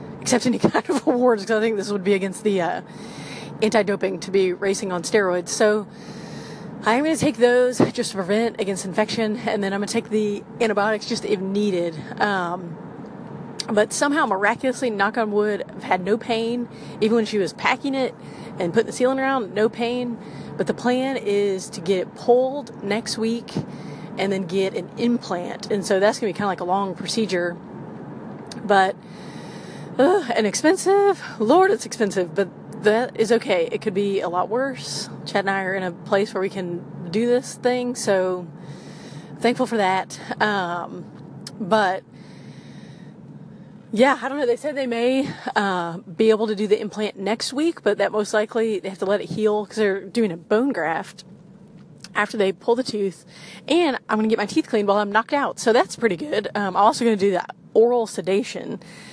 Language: English